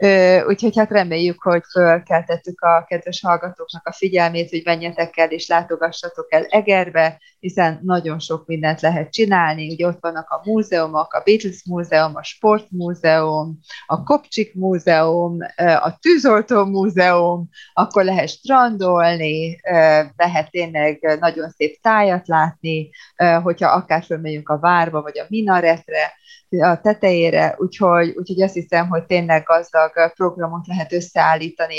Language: Hungarian